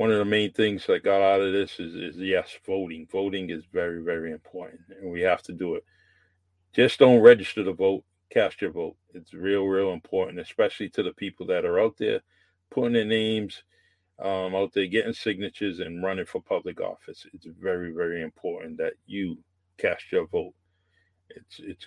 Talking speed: 190 wpm